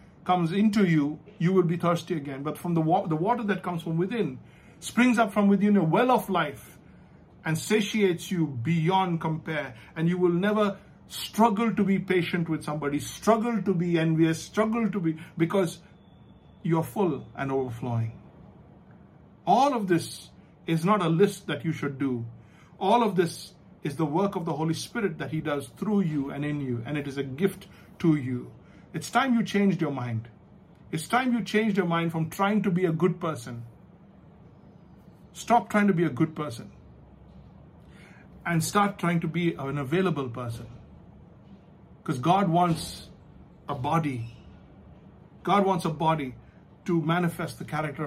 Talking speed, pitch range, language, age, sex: 170 wpm, 145-195 Hz, English, 60-79, male